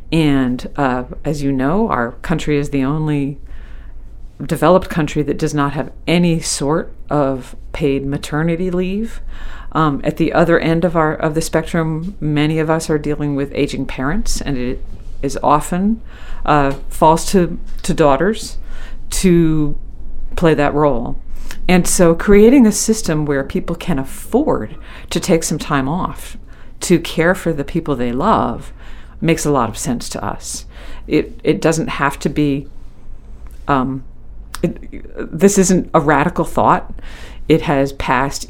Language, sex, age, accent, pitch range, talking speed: English, female, 50-69, American, 135-165 Hz, 150 wpm